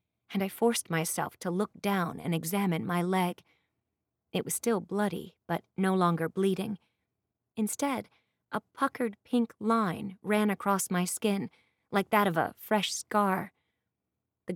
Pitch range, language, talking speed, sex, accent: 175-215 Hz, English, 145 wpm, female, American